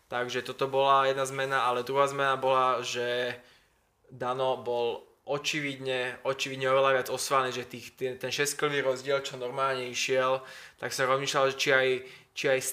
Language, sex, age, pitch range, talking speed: Slovak, male, 20-39, 125-135 Hz, 155 wpm